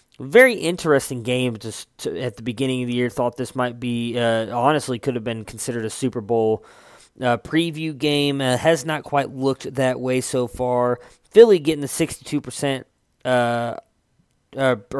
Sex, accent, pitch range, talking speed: male, American, 120-145 Hz, 170 wpm